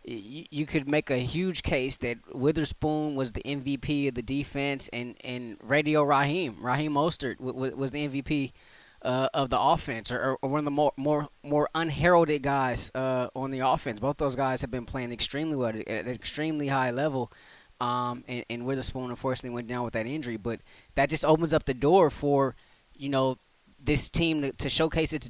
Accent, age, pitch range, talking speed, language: American, 20-39, 130-150 Hz, 195 wpm, English